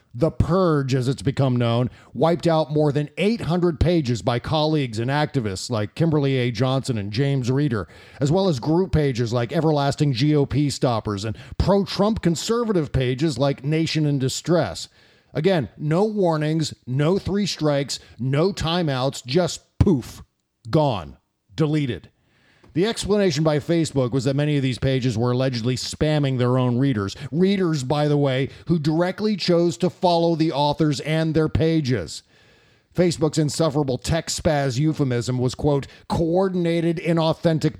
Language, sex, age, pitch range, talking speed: English, male, 40-59, 130-165 Hz, 145 wpm